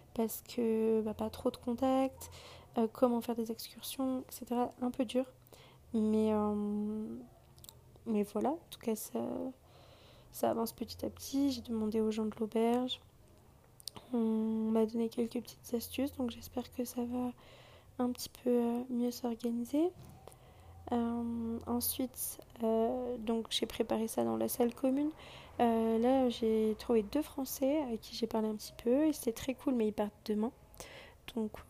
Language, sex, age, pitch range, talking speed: French, female, 20-39, 225-255 Hz, 160 wpm